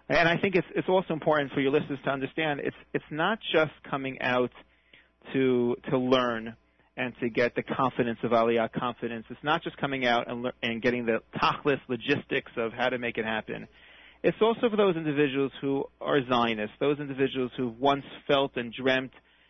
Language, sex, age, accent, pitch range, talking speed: English, male, 40-59, American, 125-155 Hz, 190 wpm